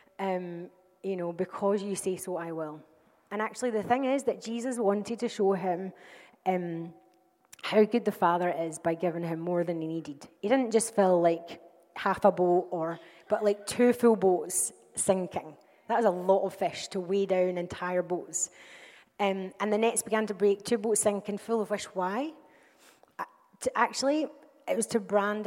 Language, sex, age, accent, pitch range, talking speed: English, female, 30-49, British, 175-205 Hz, 185 wpm